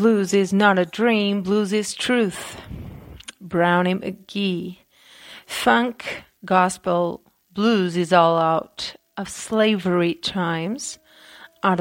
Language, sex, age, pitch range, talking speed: English, female, 30-49, 180-220 Hz, 100 wpm